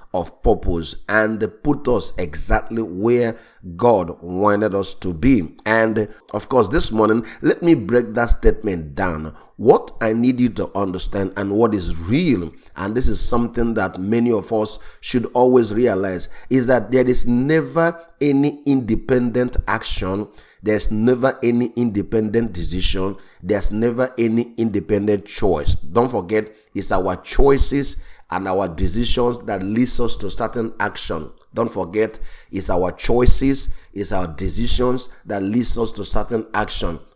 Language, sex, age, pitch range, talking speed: English, male, 30-49, 100-125 Hz, 145 wpm